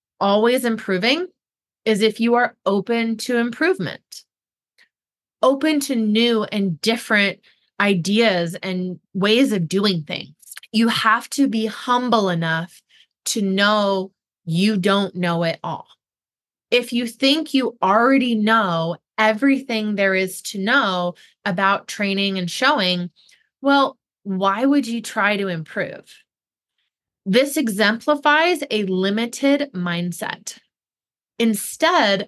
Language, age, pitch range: English, 20-39, 190-255 Hz